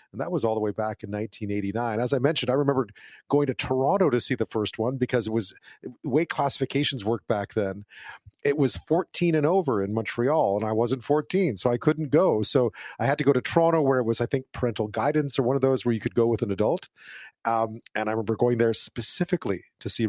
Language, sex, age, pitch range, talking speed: English, male, 40-59, 110-145 Hz, 235 wpm